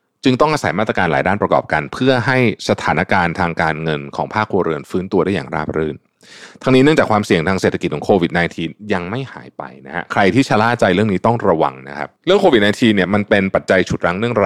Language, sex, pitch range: Thai, male, 85-125 Hz